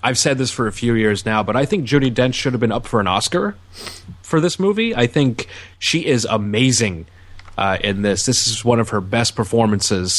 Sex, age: male, 30-49